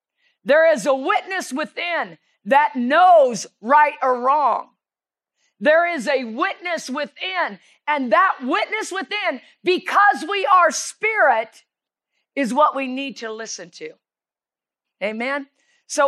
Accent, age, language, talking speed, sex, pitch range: American, 50-69, English, 120 wpm, female, 255-325 Hz